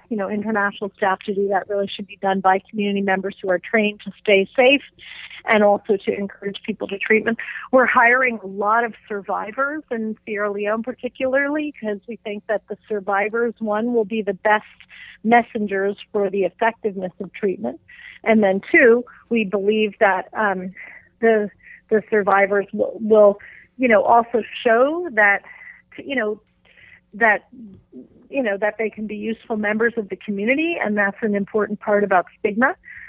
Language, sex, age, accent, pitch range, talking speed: English, female, 40-59, American, 200-230 Hz, 165 wpm